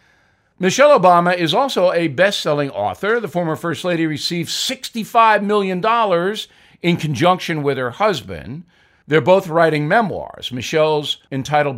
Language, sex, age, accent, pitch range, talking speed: English, male, 50-69, American, 135-190 Hz, 125 wpm